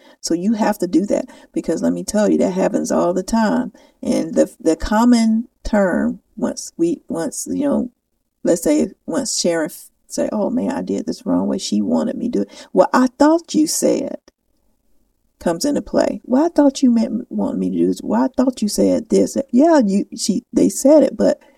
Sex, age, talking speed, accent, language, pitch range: female, 50-69, 210 wpm, American, English, 195-280 Hz